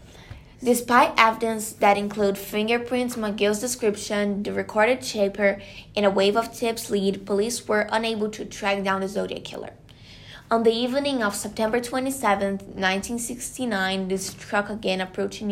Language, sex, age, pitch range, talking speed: English, female, 20-39, 195-215 Hz, 140 wpm